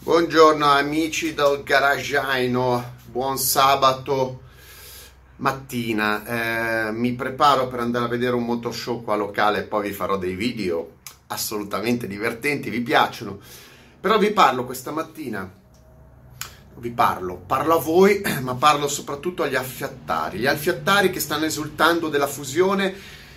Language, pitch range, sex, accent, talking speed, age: Italian, 115-165 Hz, male, native, 135 wpm, 30-49